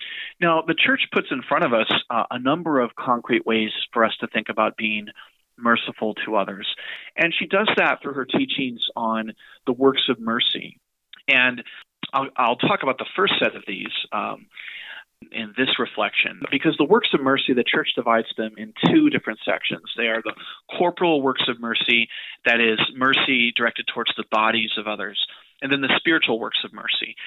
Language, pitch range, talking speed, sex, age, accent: English, 115-140 Hz, 185 wpm, male, 30-49, American